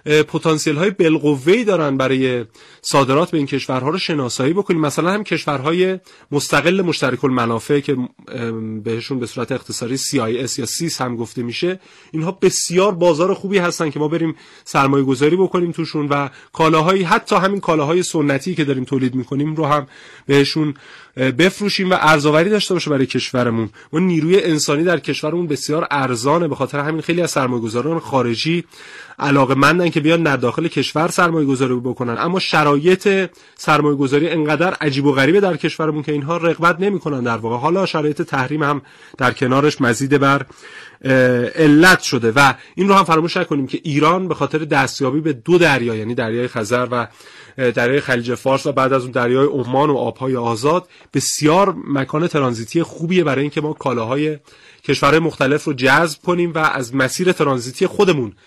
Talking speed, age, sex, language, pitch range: 165 wpm, 30-49, male, Persian, 130-170 Hz